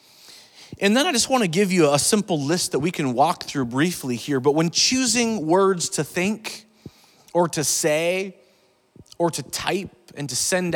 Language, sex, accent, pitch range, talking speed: English, male, American, 160-225 Hz, 180 wpm